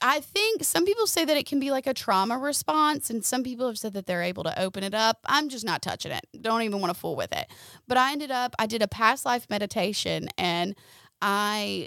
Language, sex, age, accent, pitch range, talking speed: English, female, 20-39, American, 190-235 Hz, 250 wpm